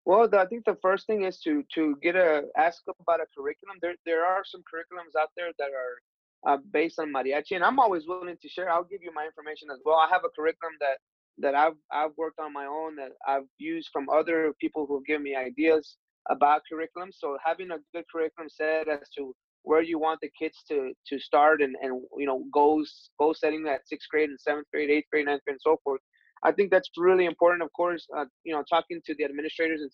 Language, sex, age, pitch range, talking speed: English, male, 20-39, 145-170 Hz, 235 wpm